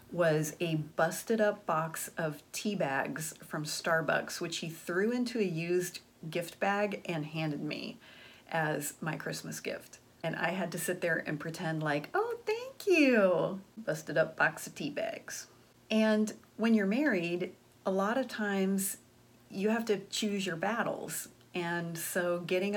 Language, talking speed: English, 160 wpm